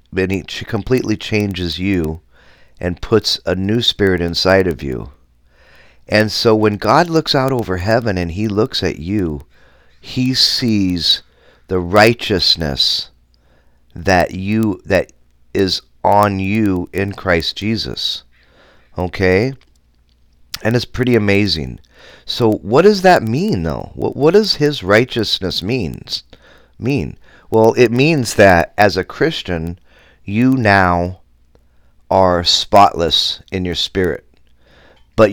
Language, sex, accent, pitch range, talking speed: English, male, American, 80-110 Hz, 120 wpm